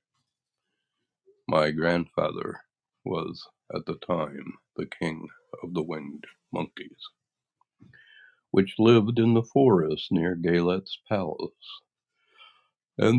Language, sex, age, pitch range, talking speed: English, male, 60-79, 80-100 Hz, 95 wpm